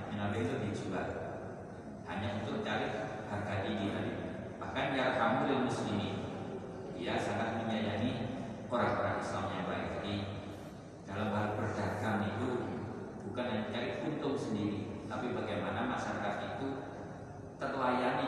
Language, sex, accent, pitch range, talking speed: Indonesian, male, native, 100-125 Hz, 110 wpm